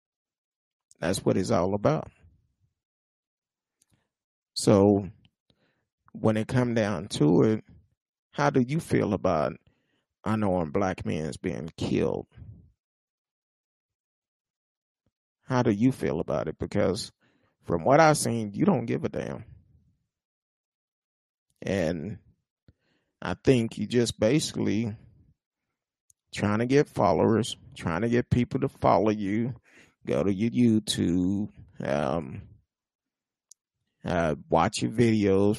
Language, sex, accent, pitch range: English, male, American, 100-125 Hz